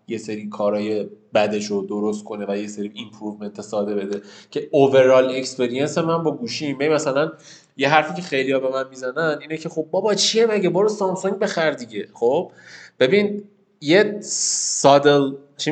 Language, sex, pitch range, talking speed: Persian, male, 125-170 Hz, 160 wpm